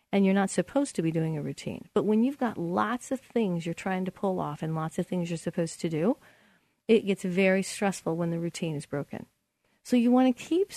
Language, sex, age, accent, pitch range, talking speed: English, female, 40-59, American, 175-220 Hz, 240 wpm